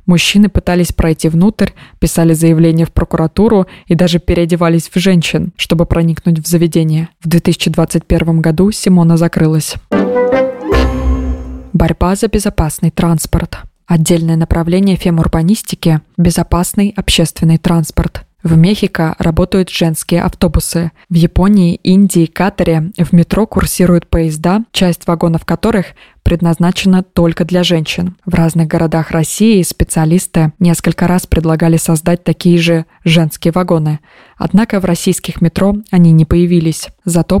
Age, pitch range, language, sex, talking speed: 20-39, 165-185 Hz, Russian, female, 115 wpm